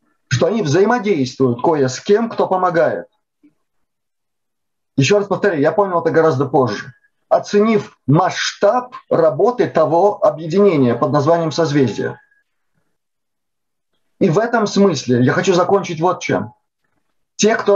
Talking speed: 120 wpm